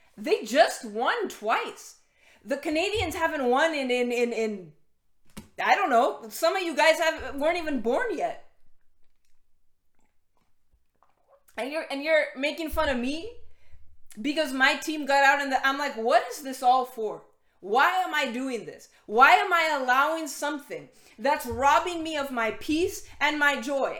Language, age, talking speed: English, 20-39, 160 wpm